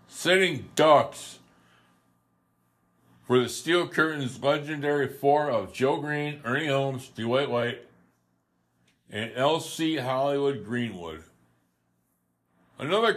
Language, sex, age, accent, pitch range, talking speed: English, male, 60-79, American, 100-150 Hz, 90 wpm